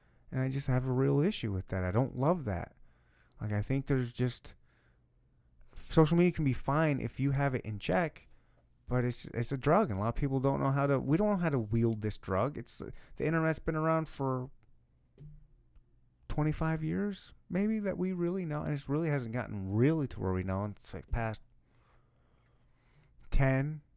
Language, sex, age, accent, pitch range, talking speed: English, male, 30-49, American, 100-135 Hz, 195 wpm